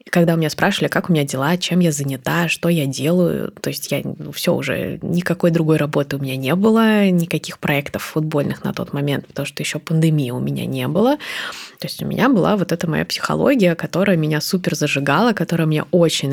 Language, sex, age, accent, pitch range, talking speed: Russian, female, 20-39, native, 155-180 Hz, 210 wpm